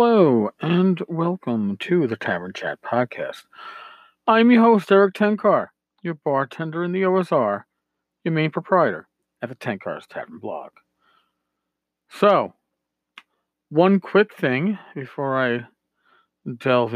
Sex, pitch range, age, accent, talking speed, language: male, 115-170 Hz, 40-59, American, 115 wpm, English